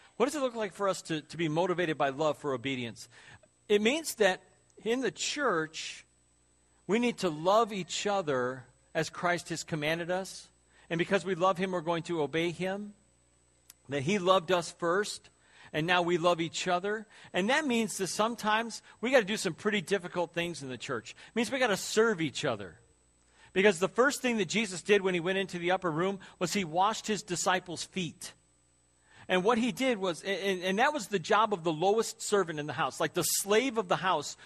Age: 40-59